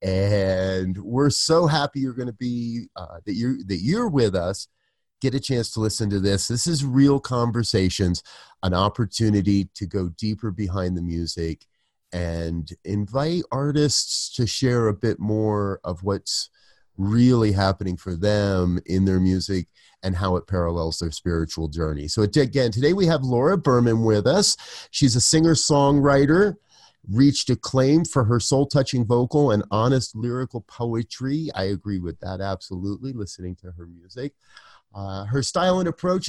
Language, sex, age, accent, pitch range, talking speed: English, male, 30-49, American, 95-130 Hz, 155 wpm